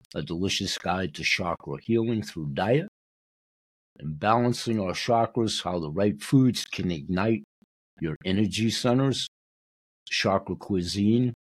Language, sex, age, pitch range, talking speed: English, male, 60-79, 85-120 Hz, 120 wpm